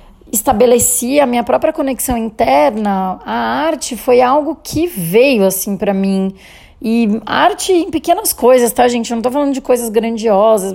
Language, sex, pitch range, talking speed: Portuguese, female, 200-245 Hz, 160 wpm